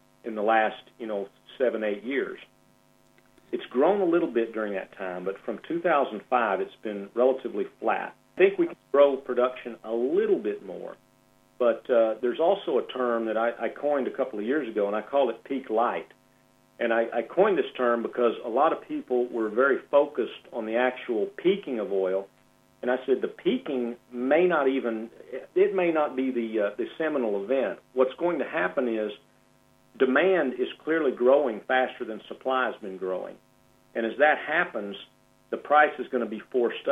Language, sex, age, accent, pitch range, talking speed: English, male, 50-69, American, 115-145 Hz, 190 wpm